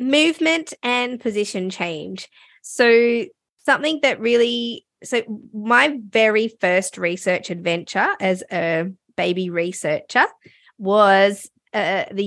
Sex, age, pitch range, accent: female, 20-39, 180-230 Hz, Australian